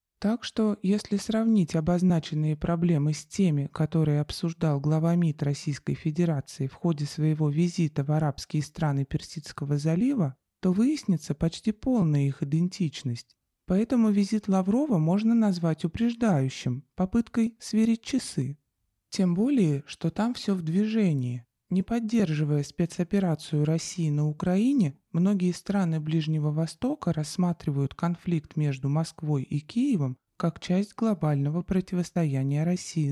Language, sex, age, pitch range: Russian, male, 20-39, 155-205 Hz